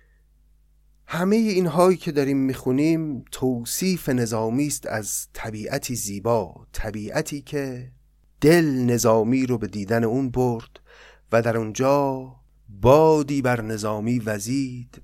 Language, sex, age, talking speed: Persian, male, 30-49, 110 wpm